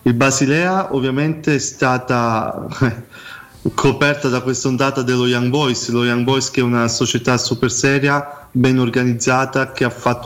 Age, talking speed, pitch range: 20-39, 140 wpm, 120-135 Hz